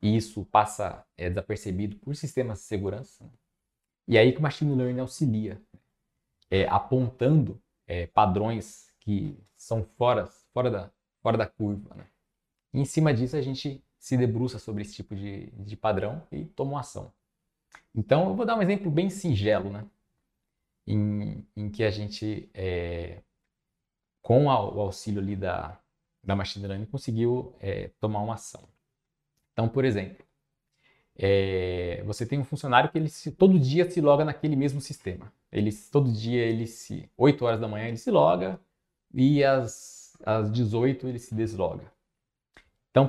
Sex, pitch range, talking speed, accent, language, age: male, 105-150 Hz, 160 wpm, Brazilian, English, 20-39